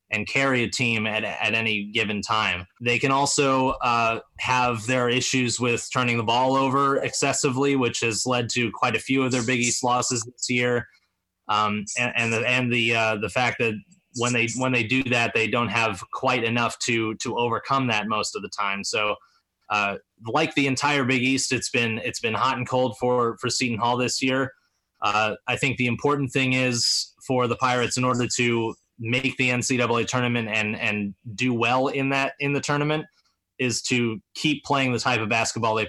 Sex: male